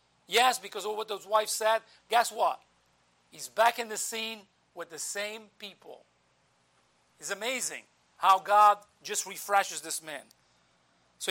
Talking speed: 145 wpm